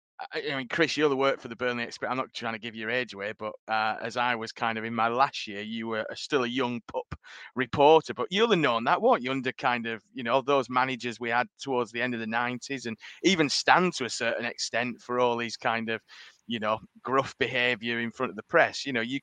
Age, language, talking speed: 30-49, English, 260 wpm